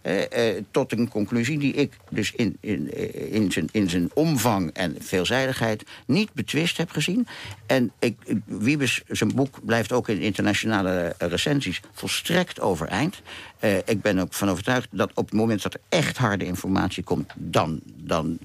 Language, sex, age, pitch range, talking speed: Dutch, male, 60-79, 100-145 Hz, 155 wpm